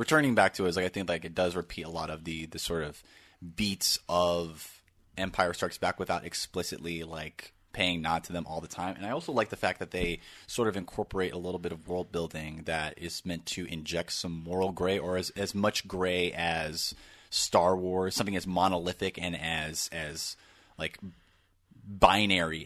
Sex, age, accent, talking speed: male, 30-49, American, 200 wpm